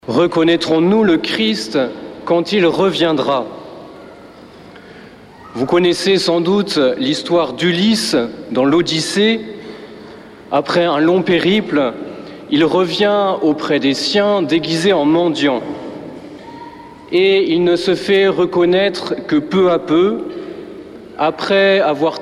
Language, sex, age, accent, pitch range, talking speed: French, male, 40-59, French, 170-215 Hz, 105 wpm